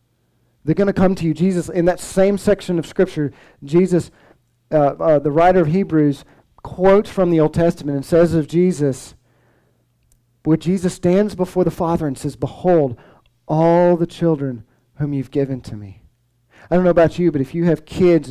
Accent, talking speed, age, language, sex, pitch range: American, 185 wpm, 40-59, English, male, 120-175 Hz